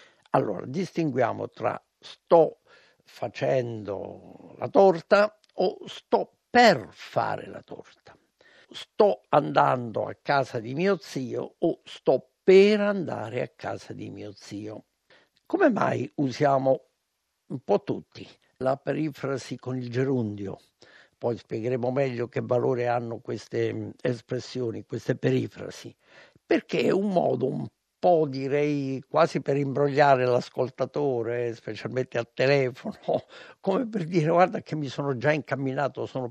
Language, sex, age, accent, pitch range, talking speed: Italian, male, 60-79, native, 120-165 Hz, 120 wpm